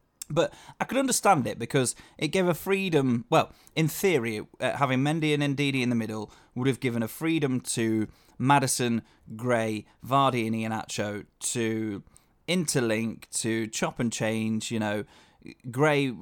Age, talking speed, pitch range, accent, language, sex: 20-39, 150 wpm, 110-145 Hz, British, English, male